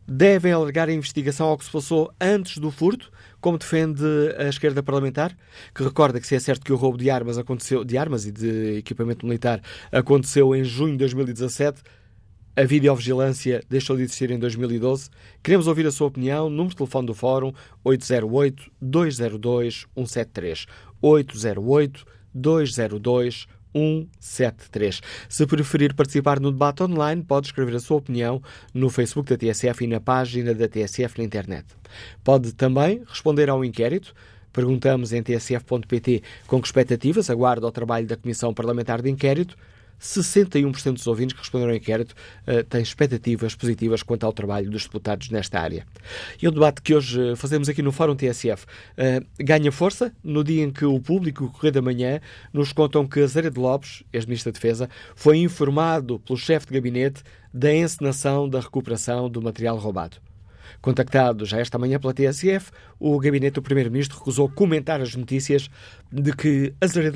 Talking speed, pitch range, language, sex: 165 wpm, 115-145 Hz, Portuguese, male